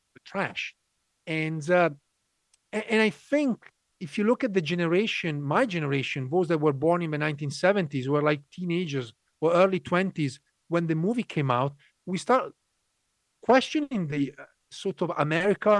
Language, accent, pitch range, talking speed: English, Italian, 150-195 Hz, 150 wpm